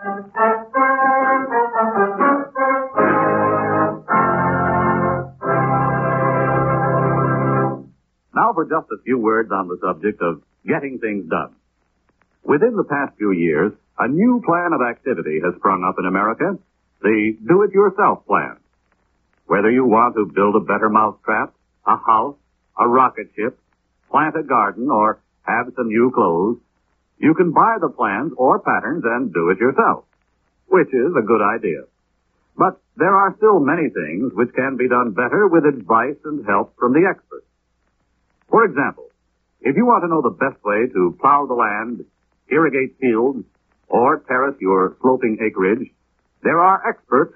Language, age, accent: English, 60-79, American